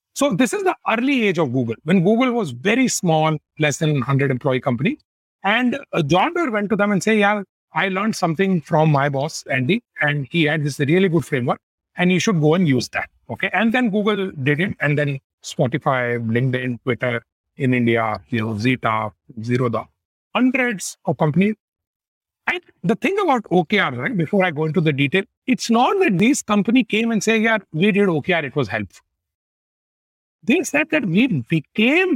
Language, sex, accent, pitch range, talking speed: English, male, Indian, 145-225 Hz, 185 wpm